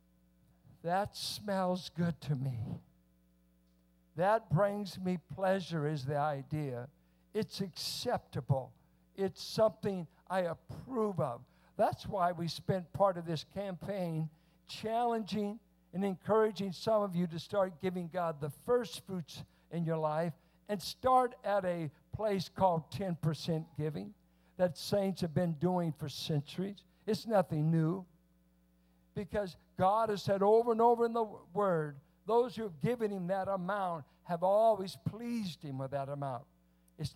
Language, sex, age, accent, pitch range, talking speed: English, male, 60-79, American, 150-200 Hz, 140 wpm